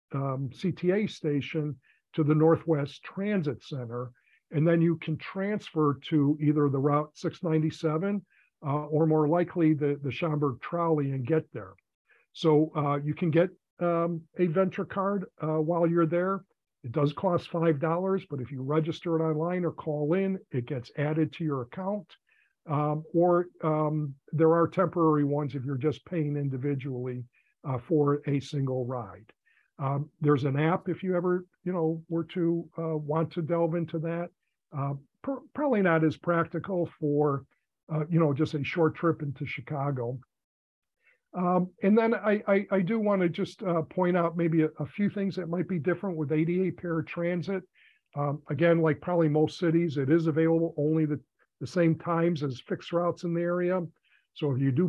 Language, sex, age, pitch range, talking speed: English, male, 50-69, 145-175 Hz, 175 wpm